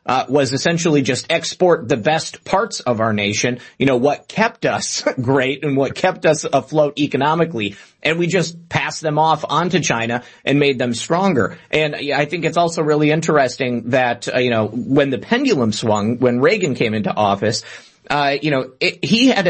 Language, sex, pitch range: English, male, 125-160 Hz